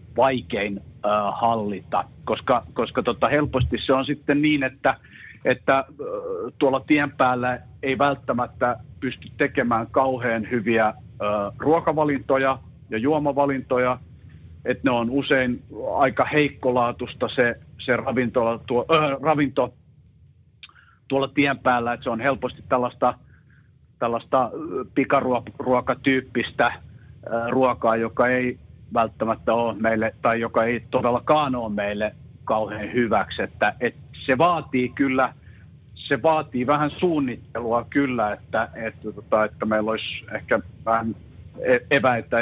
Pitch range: 115-135 Hz